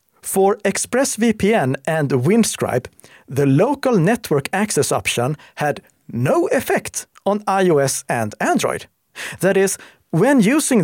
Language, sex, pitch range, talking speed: Swedish, male, 135-190 Hz, 110 wpm